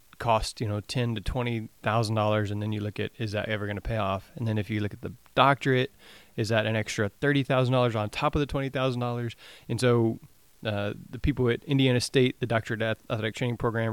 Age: 30-49